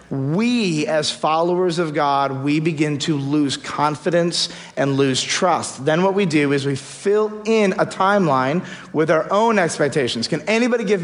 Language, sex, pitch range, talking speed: English, male, 140-190 Hz, 165 wpm